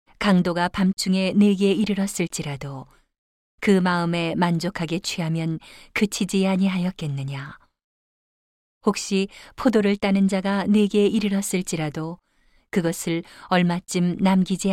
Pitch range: 170-200 Hz